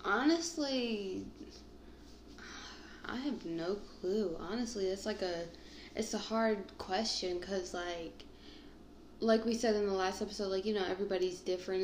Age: 20-39